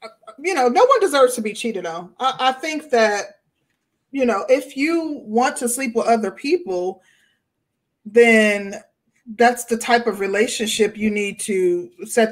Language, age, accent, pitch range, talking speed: English, 20-39, American, 190-230 Hz, 160 wpm